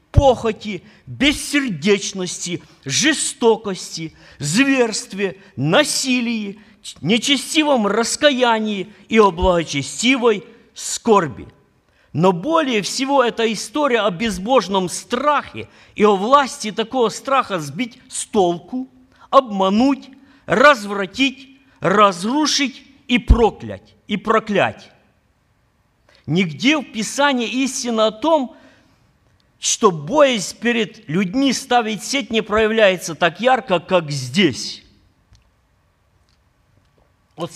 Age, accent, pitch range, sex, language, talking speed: 50-69, native, 185-255 Hz, male, Ukrainian, 85 wpm